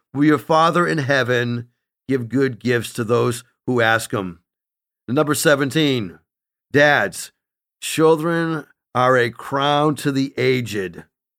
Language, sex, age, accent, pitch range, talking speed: English, male, 50-69, American, 135-175 Hz, 120 wpm